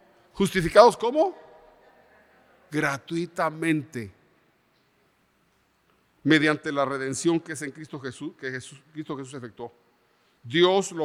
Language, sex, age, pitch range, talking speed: Spanish, male, 50-69, 135-195 Hz, 100 wpm